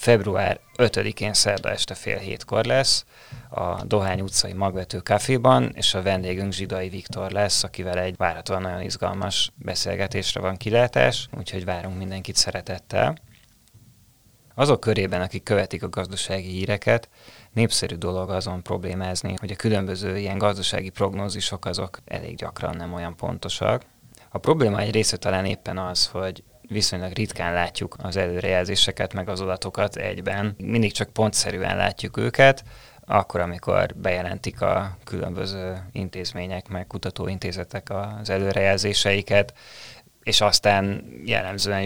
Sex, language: male, Hungarian